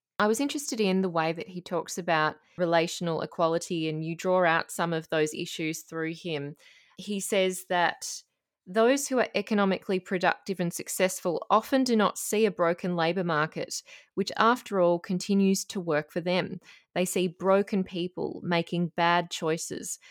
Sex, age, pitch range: female, 20-39, 160-190 Hz